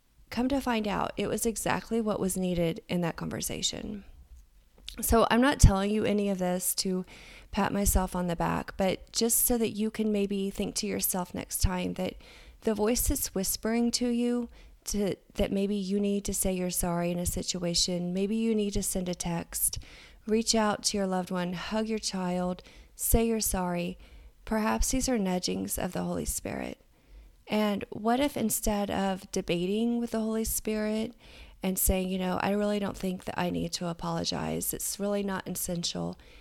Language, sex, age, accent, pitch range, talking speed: English, female, 30-49, American, 180-220 Hz, 185 wpm